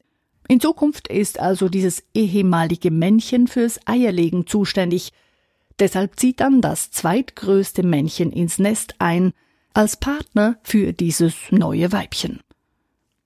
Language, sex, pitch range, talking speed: German, female, 175-225 Hz, 115 wpm